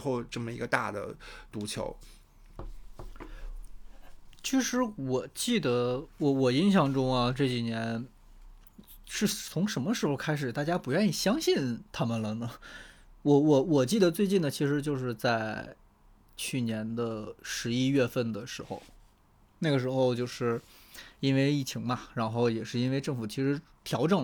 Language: Chinese